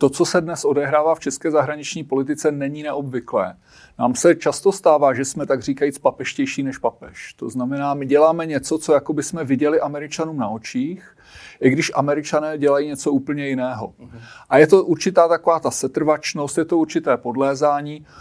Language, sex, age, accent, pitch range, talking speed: Czech, male, 40-59, native, 140-165 Hz, 175 wpm